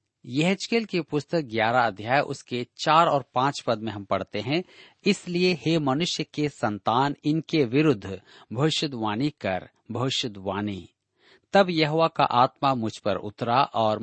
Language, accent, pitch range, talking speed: Hindi, native, 115-165 Hz, 135 wpm